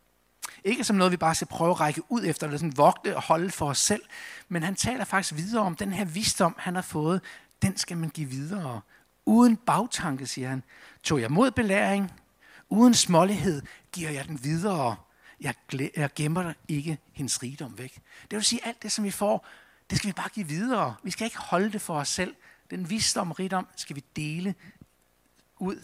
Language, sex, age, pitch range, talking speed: Danish, male, 60-79, 135-195 Hz, 200 wpm